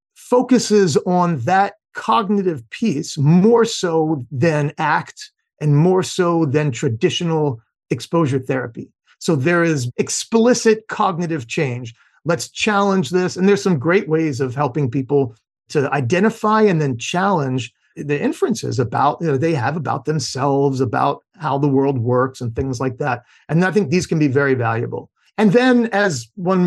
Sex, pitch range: male, 140-190 Hz